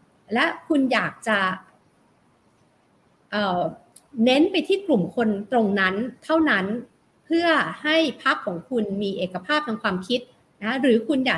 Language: Thai